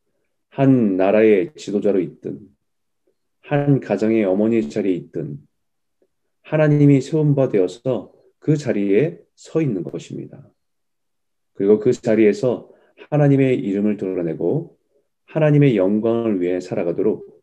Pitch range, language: 105-130 Hz, Korean